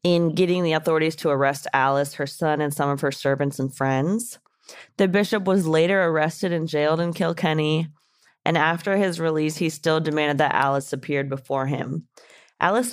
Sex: female